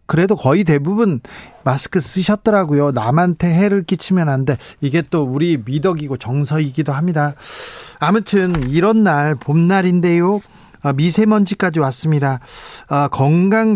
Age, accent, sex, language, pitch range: 40-59, native, male, Korean, 140-190 Hz